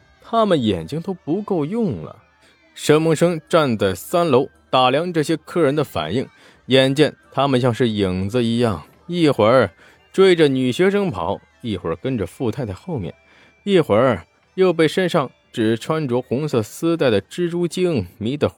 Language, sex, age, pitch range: Chinese, male, 20-39, 115-170 Hz